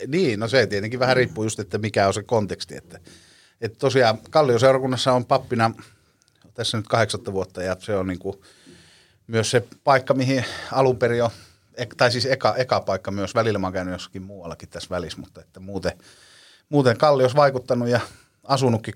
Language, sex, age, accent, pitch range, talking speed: Finnish, male, 30-49, native, 95-125 Hz, 170 wpm